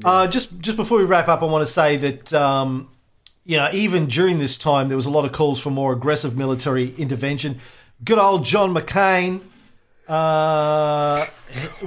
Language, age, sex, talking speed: English, 40-59, male, 175 wpm